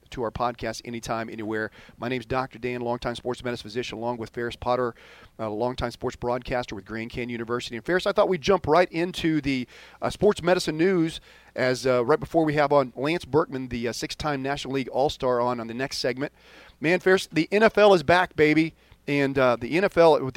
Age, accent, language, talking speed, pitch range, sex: 40-59, American, English, 210 wpm, 120-155 Hz, male